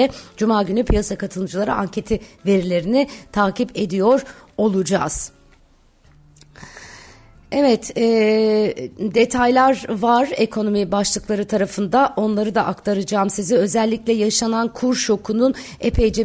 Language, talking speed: Turkish, 90 wpm